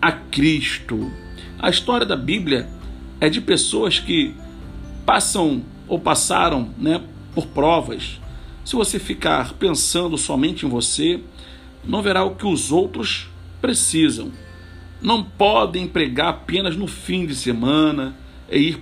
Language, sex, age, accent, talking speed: Portuguese, male, 50-69, Brazilian, 130 wpm